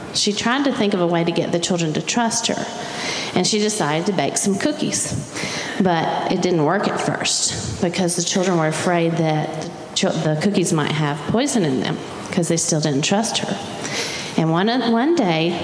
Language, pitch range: English, 170-215 Hz